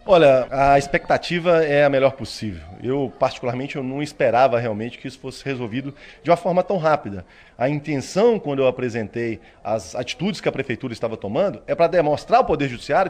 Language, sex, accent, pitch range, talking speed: Portuguese, male, Brazilian, 135-205 Hz, 185 wpm